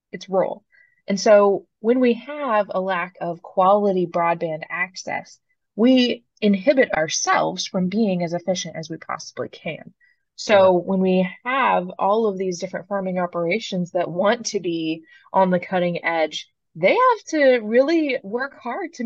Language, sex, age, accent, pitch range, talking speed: English, female, 20-39, American, 175-240 Hz, 155 wpm